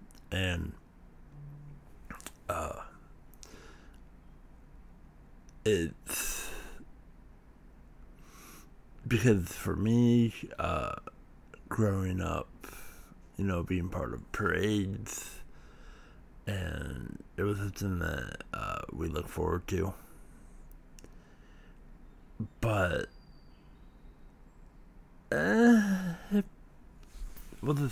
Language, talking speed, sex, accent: English, 65 wpm, male, American